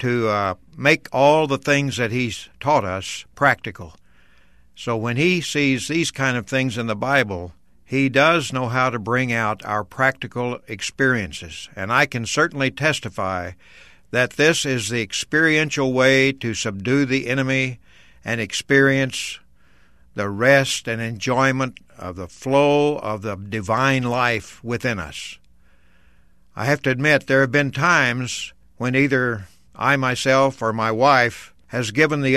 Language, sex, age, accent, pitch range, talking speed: English, male, 60-79, American, 110-140 Hz, 150 wpm